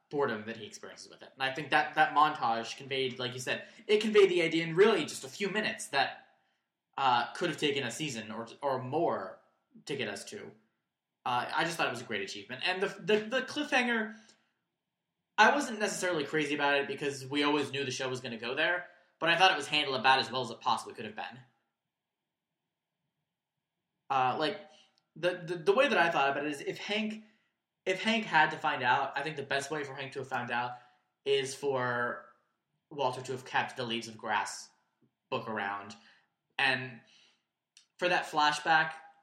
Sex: male